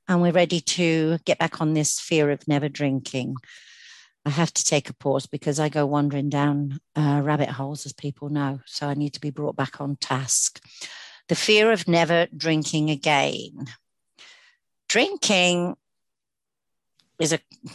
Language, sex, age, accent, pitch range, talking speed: English, female, 50-69, British, 140-160 Hz, 155 wpm